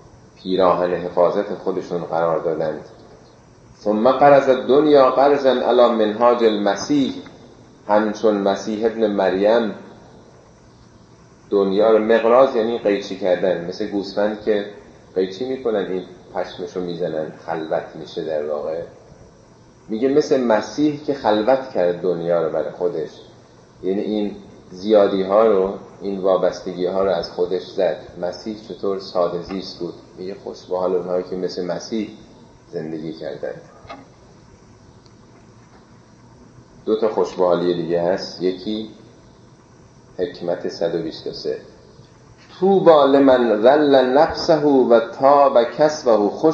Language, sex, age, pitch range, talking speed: Persian, male, 40-59, 95-135 Hz, 110 wpm